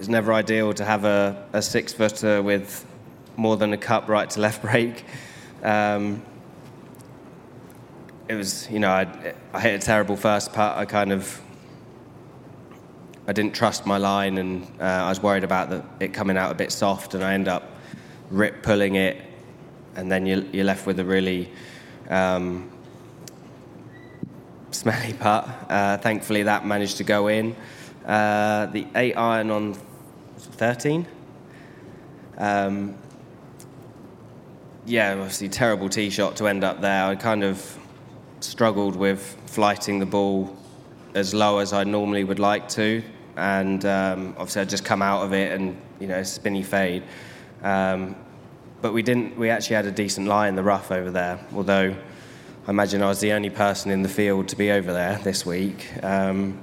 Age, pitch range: 20-39, 95-105 Hz